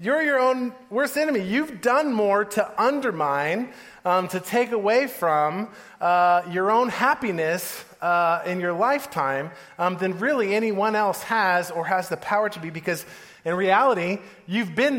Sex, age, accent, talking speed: male, 30-49, American, 160 wpm